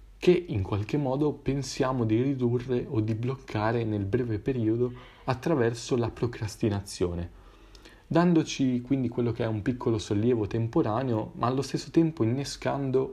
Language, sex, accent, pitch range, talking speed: Italian, male, native, 110-140 Hz, 135 wpm